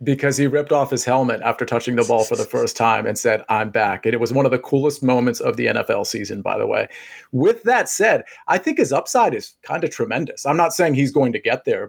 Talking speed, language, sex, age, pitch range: 265 wpm, English, male, 40-59, 125-180 Hz